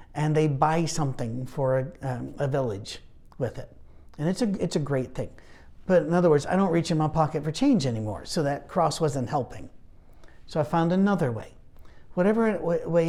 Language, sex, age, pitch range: English, male, 60-79, 125-170 Hz